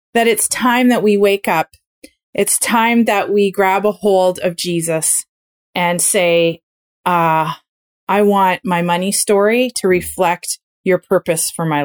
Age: 30-49